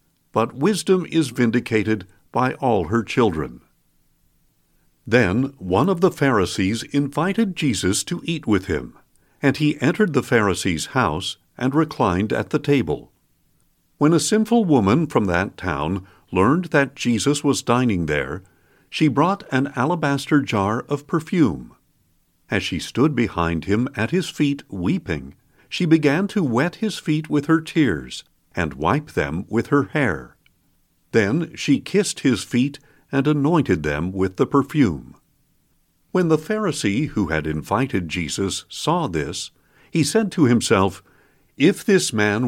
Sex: male